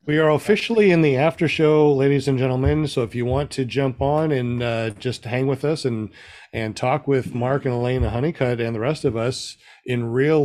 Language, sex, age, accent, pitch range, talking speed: English, male, 50-69, American, 125-180 Hz, 225 wpm